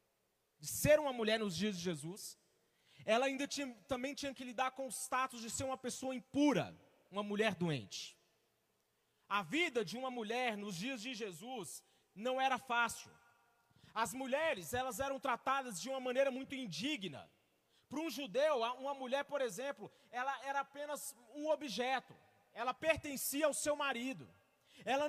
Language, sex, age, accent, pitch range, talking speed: Portuguese, male, 30-49, Brazilian, 200-270 Hz, 155 wpm